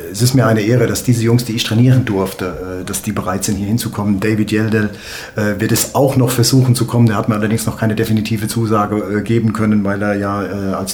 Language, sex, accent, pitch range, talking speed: German, male, German, 105-120 Hz, 225 wpm